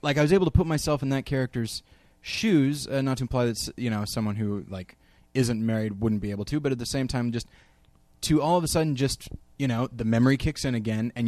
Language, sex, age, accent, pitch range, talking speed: English, male, 20-39, American, 110-135 Hz, 250 wpm